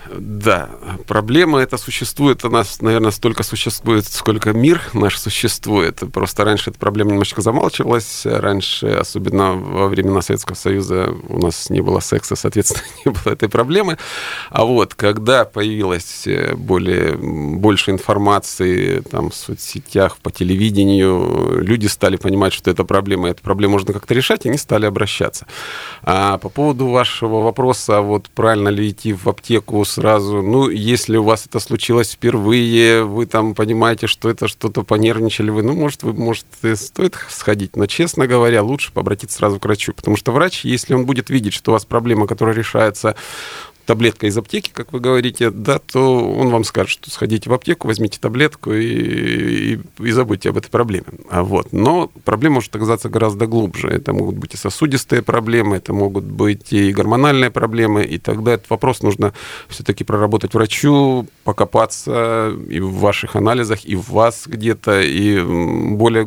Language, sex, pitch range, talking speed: Russian, male, 100-120 Hz, 165 wpm